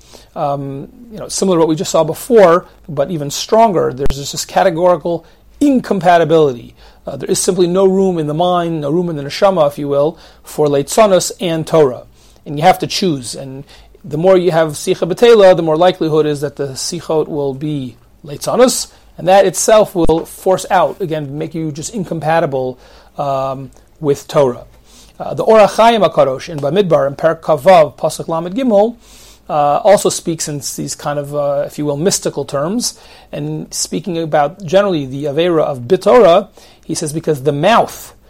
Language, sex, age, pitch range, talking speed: English, male, 40-59, 145-190 Hz, 175 wpm